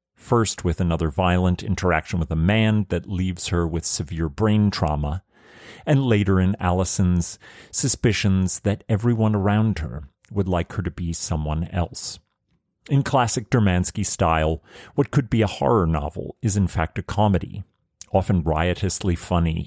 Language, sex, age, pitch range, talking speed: English, male, 40-59, 85-105 Hz, 150 wpm